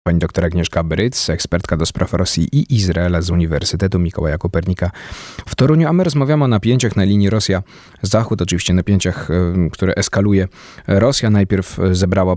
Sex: male